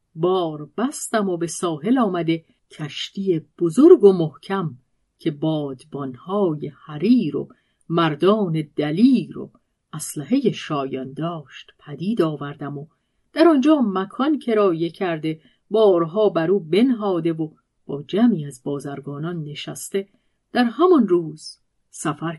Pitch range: 155-205 Hz